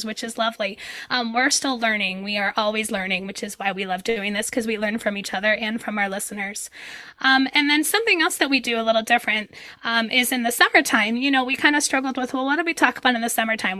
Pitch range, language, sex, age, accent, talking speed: 210-255 Hz, English, female, 10-29, American, 260 wpm